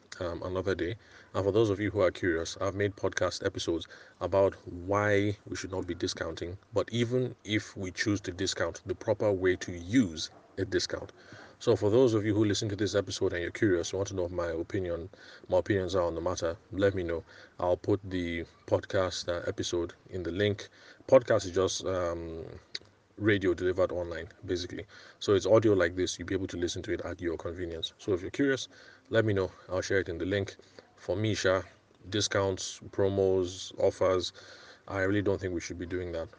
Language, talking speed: English, 205 wpm